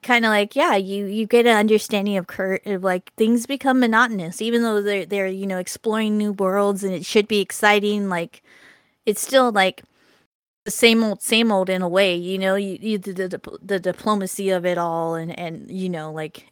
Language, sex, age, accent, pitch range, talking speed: English, female, 20-39, American, 185-220 Hz, 210 wpm